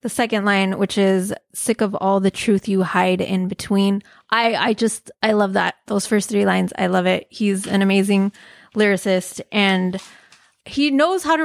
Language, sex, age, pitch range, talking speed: English, female, 20-39, 200-255 Hz, 190 wpm